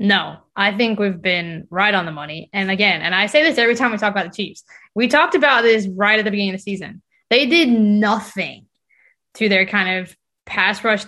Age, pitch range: 20-39, 195-250 Hz